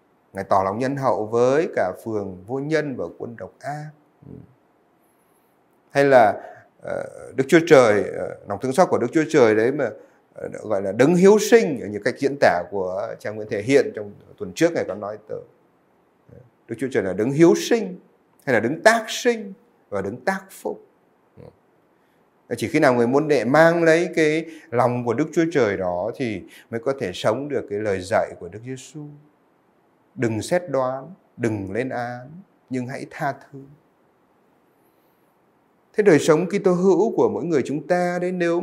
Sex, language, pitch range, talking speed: male, Vietnamese, 120-180 Hz, 180 wpm